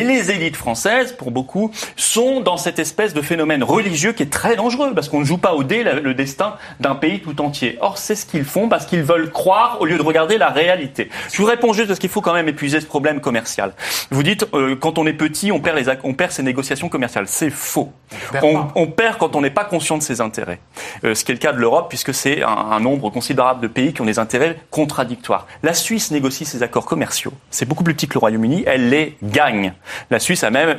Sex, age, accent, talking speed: male, 30-49, French, 250 wpm